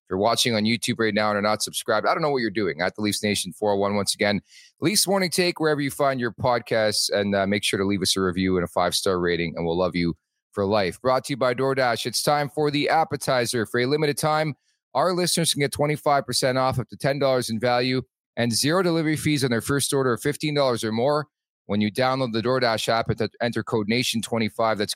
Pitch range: 110-140 Hz